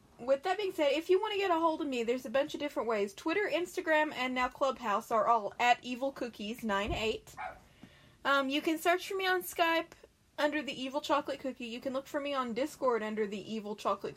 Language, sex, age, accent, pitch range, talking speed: English, female, 20-39, American, 230-295 Hz, 220 wpm